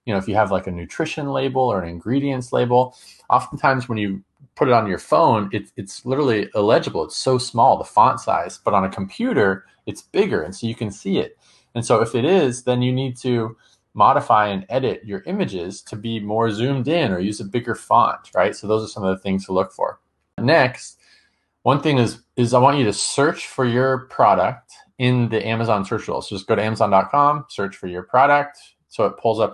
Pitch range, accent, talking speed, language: 100-125 Hz, American, 220 wpm, English